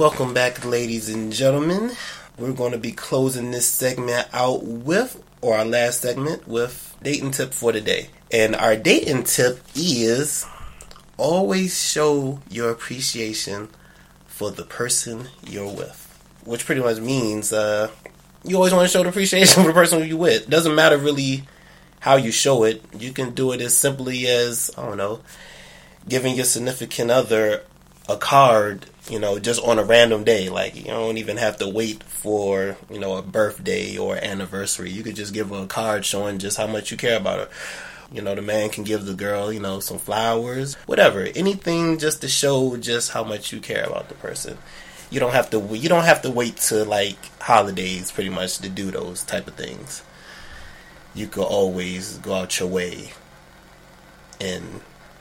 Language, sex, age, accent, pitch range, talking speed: English, male, 20-39, American, 105-135 Hz, 180 wpm